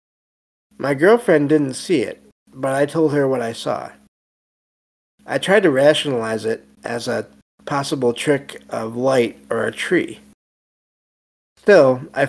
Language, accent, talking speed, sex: English, American, 135 wpm, male